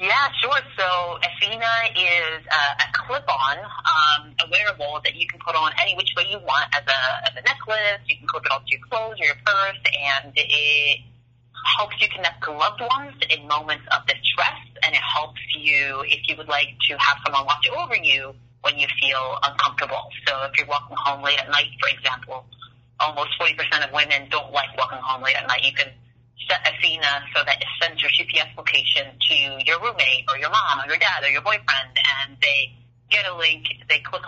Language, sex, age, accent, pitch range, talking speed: English, female, 30-49, American, 135-170 Hz, 205 wpm